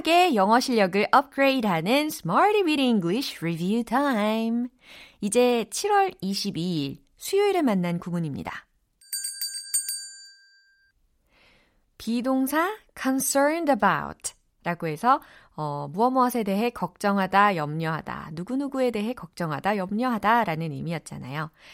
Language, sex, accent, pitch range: Korean, female, native, 180-265 Hz